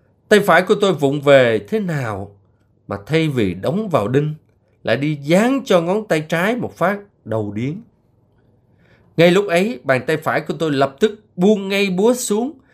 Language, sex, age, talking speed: Vietnamese, male, 20-39, 185 wpm